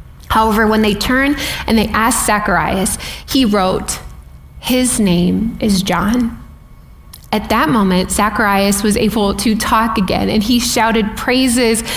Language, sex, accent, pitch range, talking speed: English, female, American, 195-240 Hz, 135 wpm